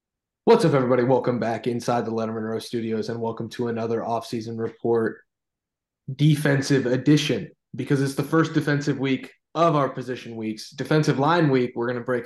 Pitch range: 120-145 Hz